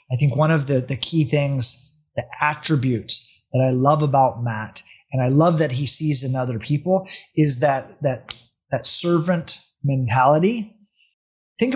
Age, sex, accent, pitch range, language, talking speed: 30-49, male, American, 140-175 Hz, English, 160 wpm